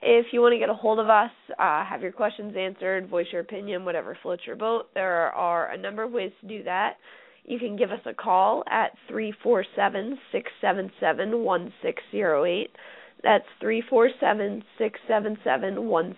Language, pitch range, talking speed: English, 200-235 Hz, 170 wpm